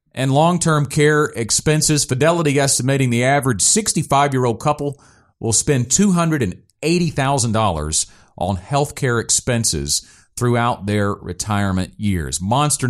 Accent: American